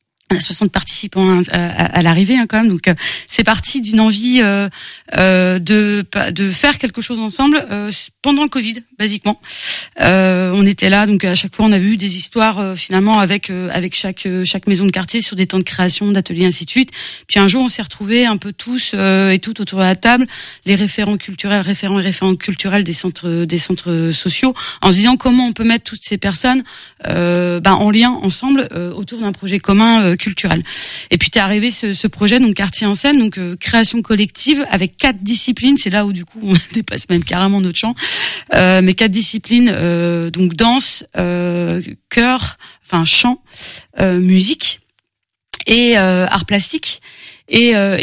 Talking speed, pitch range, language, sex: 195 wpm, 185-225 Hz, French, female